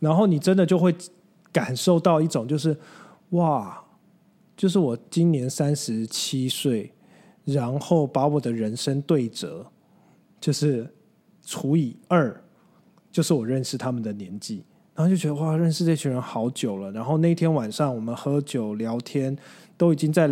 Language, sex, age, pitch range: Chinese, male, 20-39, 125-180 Hz